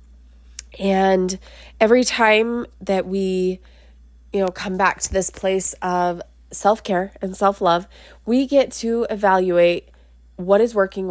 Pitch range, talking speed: 170-200 Hz, 135 wpm